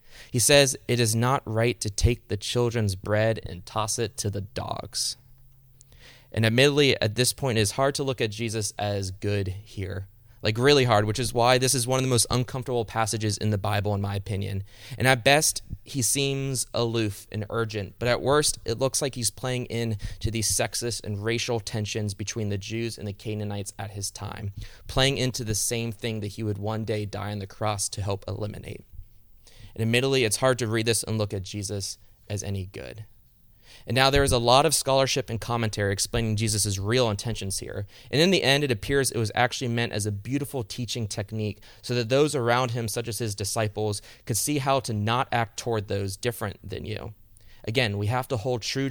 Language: English